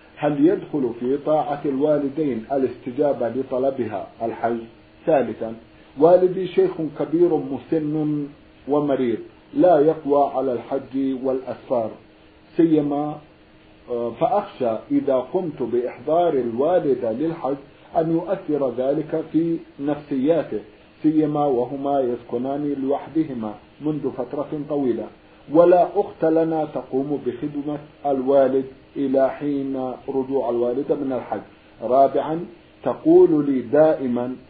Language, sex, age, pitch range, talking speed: Arabic, male, 50-69, 130-155 Hz, 95 wpm